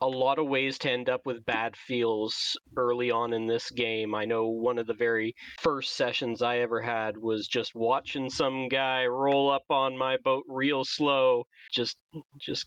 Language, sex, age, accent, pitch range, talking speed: English, male, 30-49, American, 120-150 Hz, 190 wpm